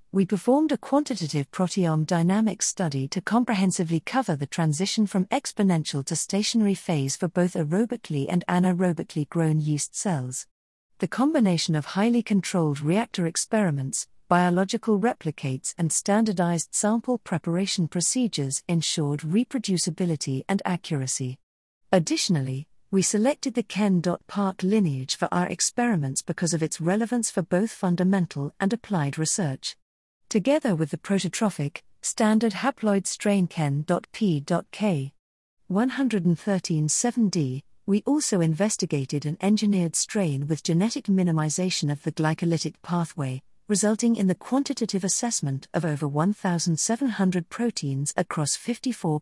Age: 50-69